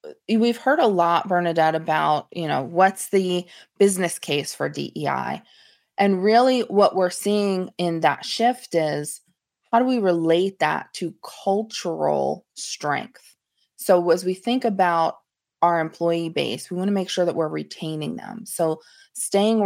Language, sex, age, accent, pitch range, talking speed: English, female, 20-39, American, 155-185 Hz, 155 wpm